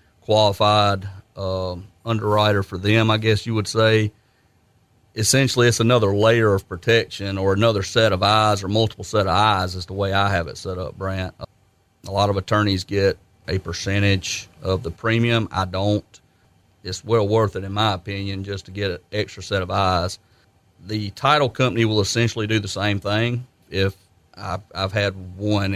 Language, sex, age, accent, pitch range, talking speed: English, male, 40-59, American, 95-110 Hz, 175 wpm